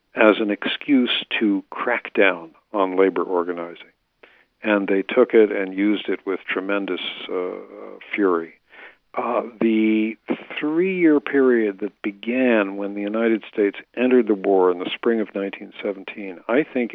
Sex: male